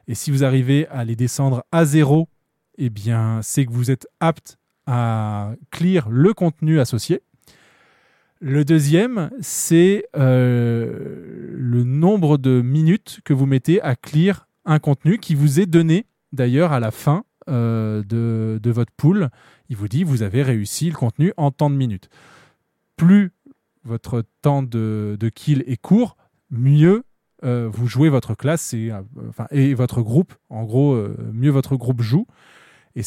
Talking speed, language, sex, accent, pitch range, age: 160 wpm, French, male, French, 120-160 Hz, 20-39